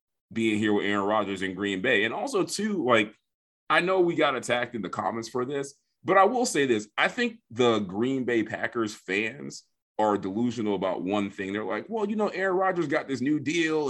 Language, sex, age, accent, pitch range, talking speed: English, male, 30-49, American, 115-155 Hz, 215 wpm